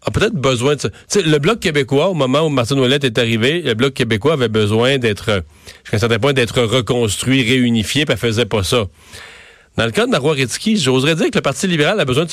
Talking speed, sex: 240 wpm, male